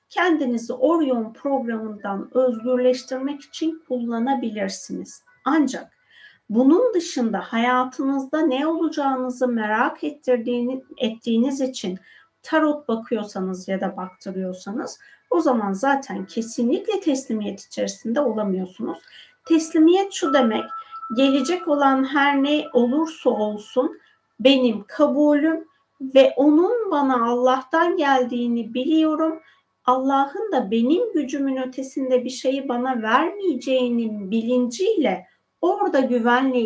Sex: female